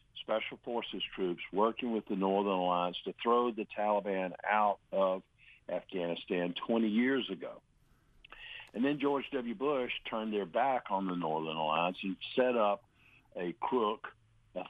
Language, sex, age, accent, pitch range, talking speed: English, male, 60-79, American, 95-115 Hz, 145 wpm